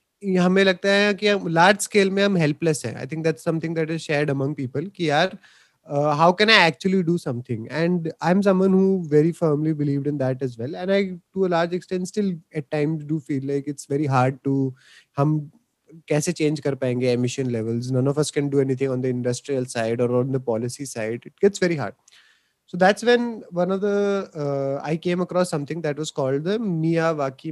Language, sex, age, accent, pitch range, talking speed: Hindi, male, 20-39, native, 140-180 Hz, 160 wpm